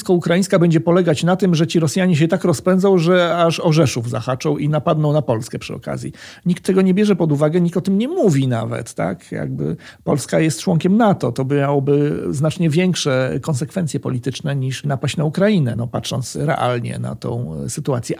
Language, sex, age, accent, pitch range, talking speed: Polish, male, 40-59, native, 140-185 Hz, 185 wpm